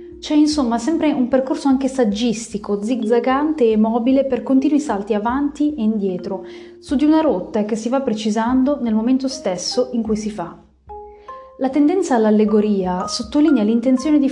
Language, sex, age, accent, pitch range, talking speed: Italian, female, 30-49, native, 200-265 Hz, 155 wpm